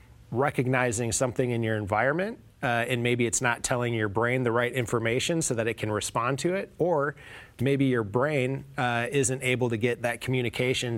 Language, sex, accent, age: English, male, American, 20-39